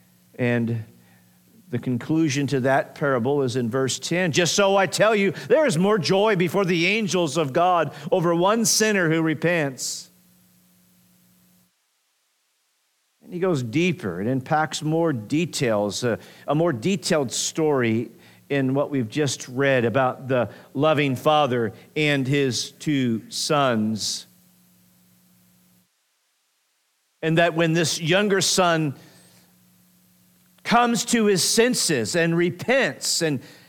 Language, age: English, 50-69